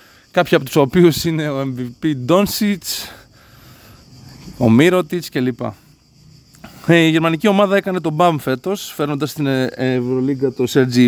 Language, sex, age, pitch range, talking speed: Greek, male, 20-39, 125-175 Hz, 125 wpm